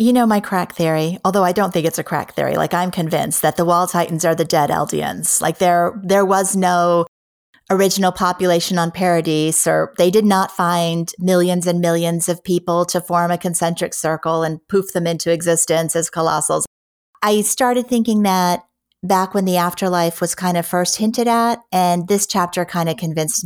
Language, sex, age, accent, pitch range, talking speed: English, female, 30-49, American, 165-195 Hz, 190 wpm